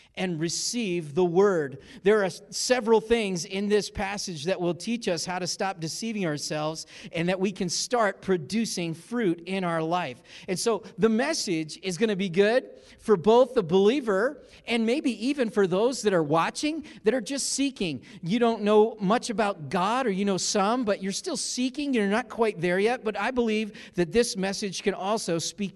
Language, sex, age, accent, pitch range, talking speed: English, male, 40-59, American, 175-225 Hz, 195 wpm